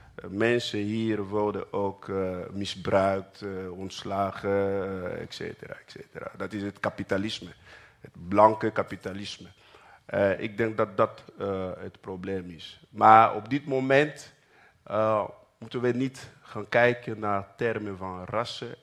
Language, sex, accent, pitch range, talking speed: Dutch, male, Dutch, 100-125 Hz, 135 wpm